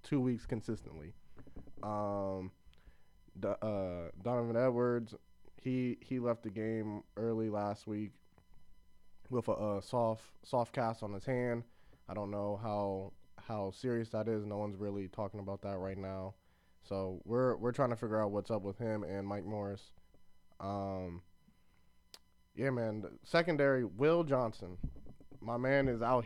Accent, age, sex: American, 20-39, male